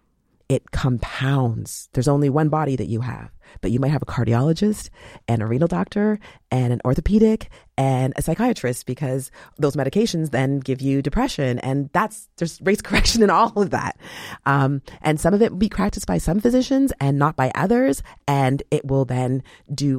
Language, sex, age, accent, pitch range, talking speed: English, female, 30-49, American, 125-175 Hz, 185 wpm